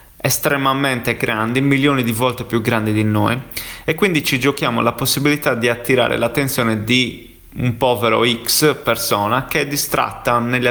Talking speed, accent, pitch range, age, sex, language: 150 wpm, native, 115-135 Hz, 30-49, male, Italian